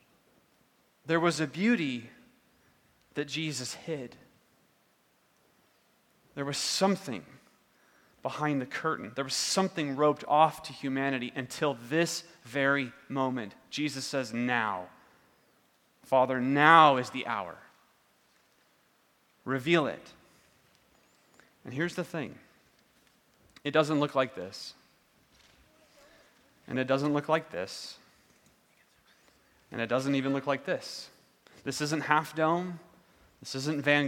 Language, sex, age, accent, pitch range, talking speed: English, male, 30-49, American, 130-160 Hz, 110 wpm